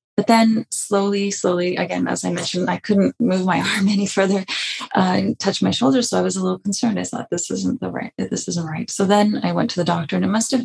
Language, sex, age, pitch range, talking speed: English, female, 30-49, 165-200 Hz, 255 wpm